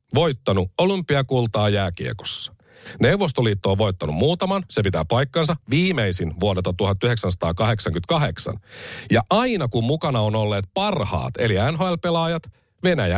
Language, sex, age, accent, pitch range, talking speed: Finnish, male, 50-69, native, 110-170 Hz, 105 wpm